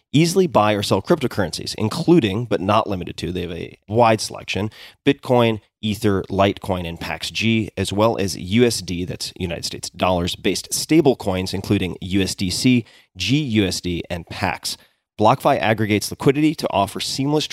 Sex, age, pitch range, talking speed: male, 30-49, 95-115 Hz, 140 wpm